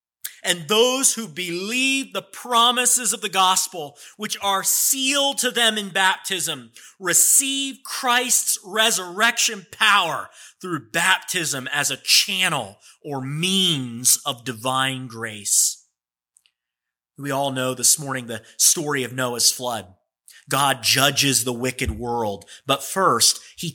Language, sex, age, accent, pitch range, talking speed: English, male, 30-49, American, 130-195 Hz, 120 wpm